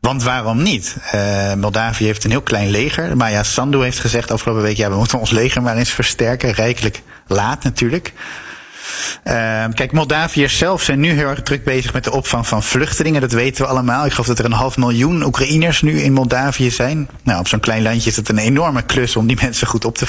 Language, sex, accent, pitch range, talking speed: Dutch, male, Dutch, 110-130 Hz, 220 wpm